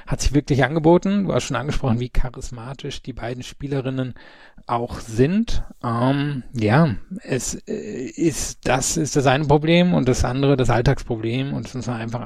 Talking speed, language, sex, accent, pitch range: 170 wpm, German, male, German, 115-135 Hz